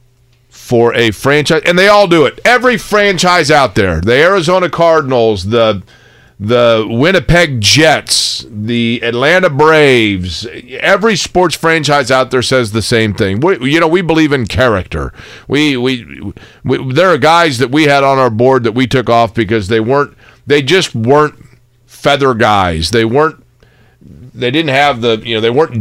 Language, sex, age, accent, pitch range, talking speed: English, male, 40-59, American, 120-160 Hz, 155 wpm